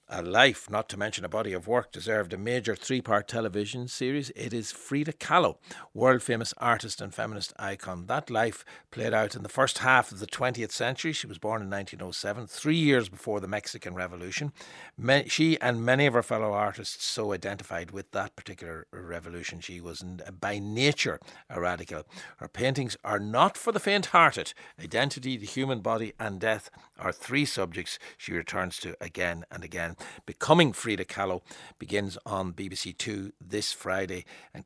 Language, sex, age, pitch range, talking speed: English, male, 60-79, 100-130 Hz, 170 wpm